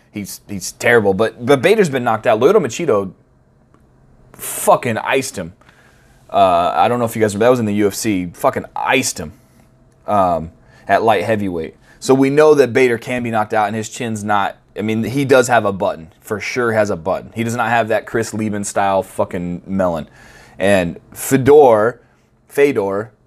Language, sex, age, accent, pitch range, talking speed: English, male, 20-39, American, 100-120 Hz, 185 wpm